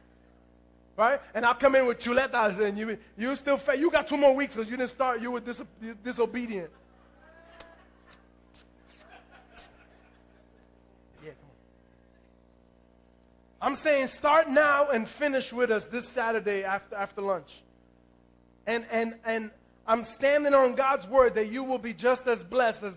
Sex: male